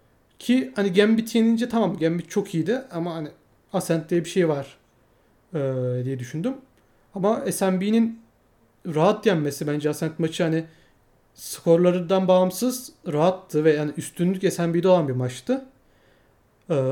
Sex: male